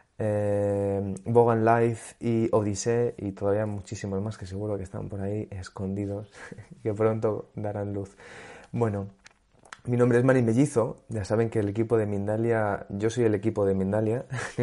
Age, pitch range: 30-49, 100-115 Hz